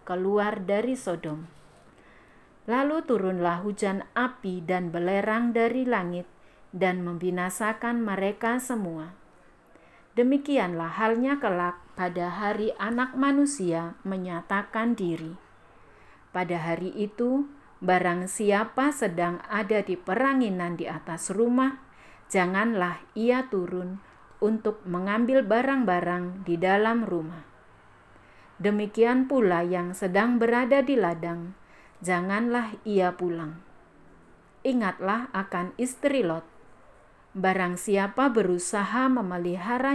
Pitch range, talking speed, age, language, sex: 180-230 Hz, 95 wpm, 50-69, Indonesian, female